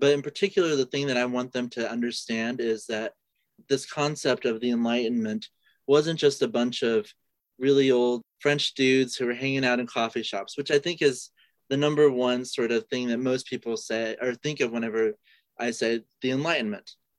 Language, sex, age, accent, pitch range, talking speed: English, male, 30-49, American, 115-145 Hz, 195 wpm